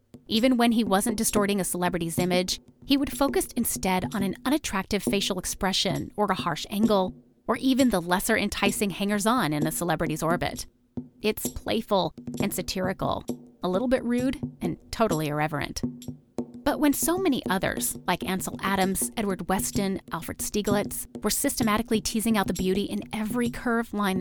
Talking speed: 160 wpm